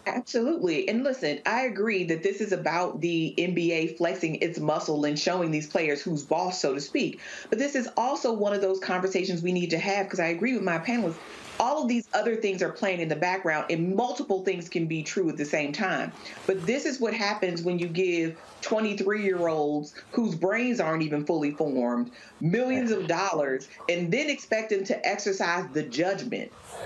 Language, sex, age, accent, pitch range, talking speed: English, female, 40-59, American, 170-210 Hz, 195 wpm